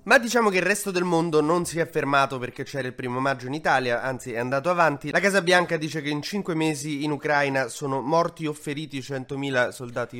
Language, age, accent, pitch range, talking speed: Italian, 20-39, native, 115-160 Hz, 225 wpm